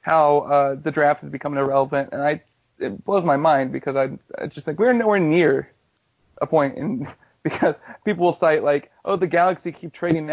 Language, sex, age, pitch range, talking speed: English, male, 30-49, 145-170 Hz, 200 wpm